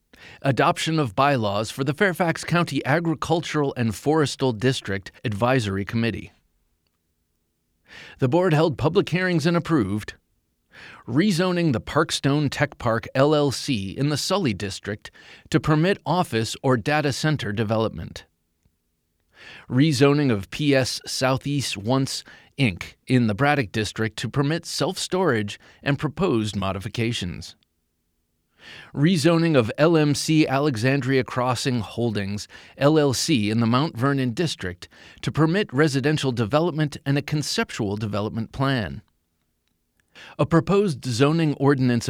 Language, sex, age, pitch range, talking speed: English, male, 30-49, 110-155 Hz, 110 wpm